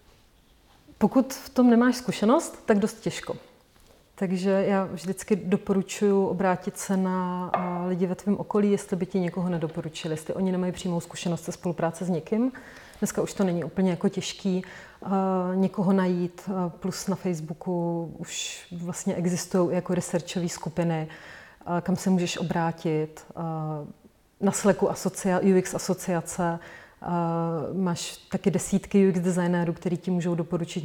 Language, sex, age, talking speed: Czech, female, 30-49, 145 wpm